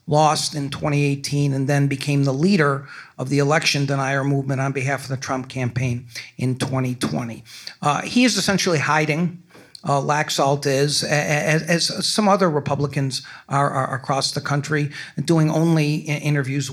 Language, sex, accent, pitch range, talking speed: English, male, American, 135-155 Hz, 150 wpm